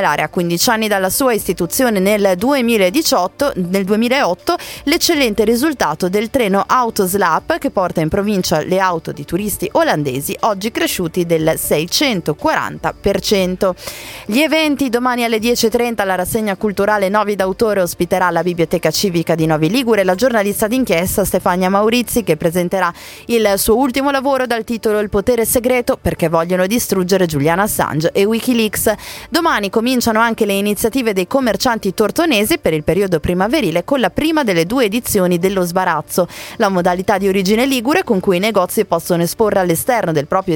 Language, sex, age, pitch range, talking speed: Italian, female, 20-39, 180-245 Hz, 155 wpm